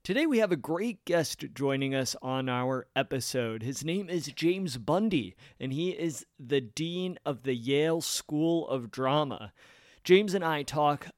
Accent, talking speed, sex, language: American, 165 wpm, male, English